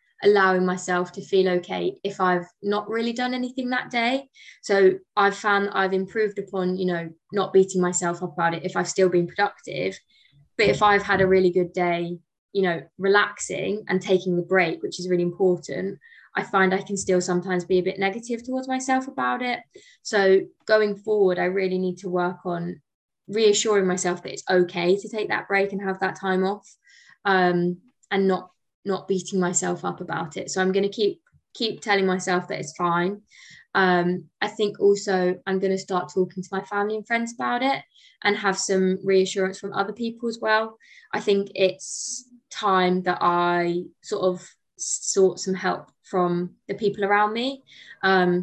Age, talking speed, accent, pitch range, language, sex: 20-39, 185 wpm, British, 180-205 Hz, English, female